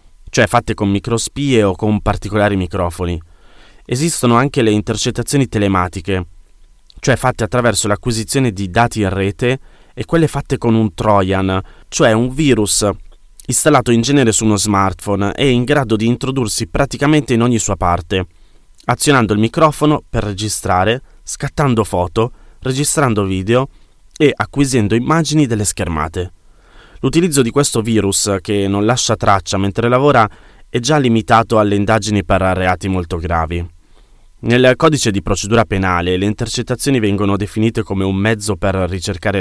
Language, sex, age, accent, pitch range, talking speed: Italian, male, 20-39, native, 95-125 Hz, 140 wpm